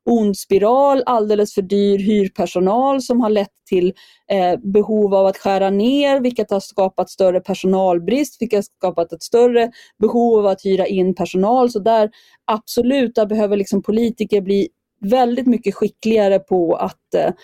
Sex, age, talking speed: female, 30-49, 140 wpm